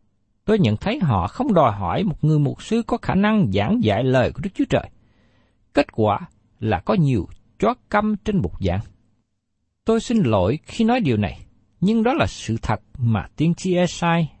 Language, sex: Vietnamese, male